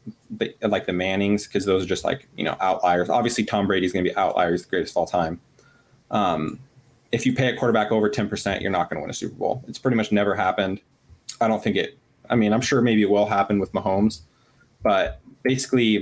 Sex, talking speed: male, 230 wpm